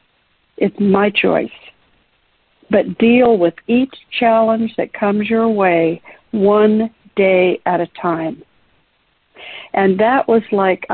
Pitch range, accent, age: 190-230 Hz, American, 60-79